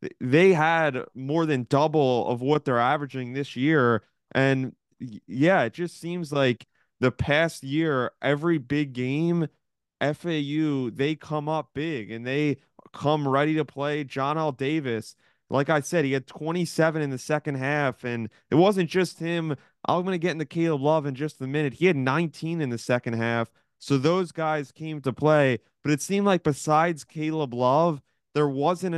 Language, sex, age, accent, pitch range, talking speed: English, male, 20-39, American, 130-160 Hz, 175 wpm